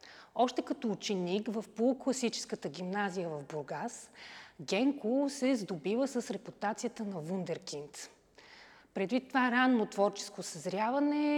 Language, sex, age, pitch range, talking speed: Bulgarian, female, 30-49, 190-245 Hz, 105 wpm